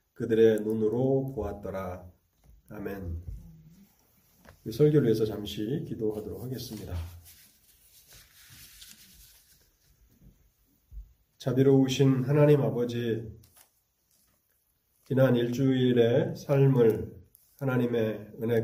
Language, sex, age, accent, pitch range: Korean, male, 40-59, native, 110-135 Hz